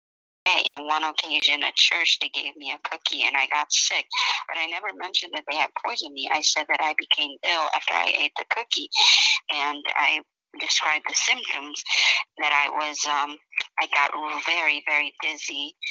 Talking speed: 185 wpm